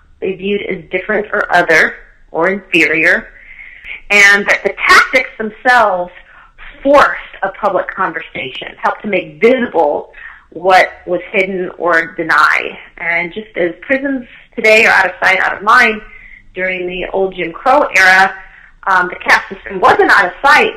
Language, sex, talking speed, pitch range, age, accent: English, female, 150 wpm, 185-230 Hz, 30-49, American